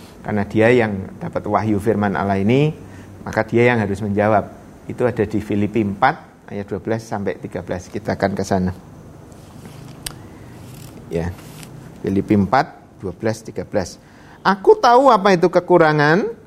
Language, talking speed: Indonesian, 130 wpm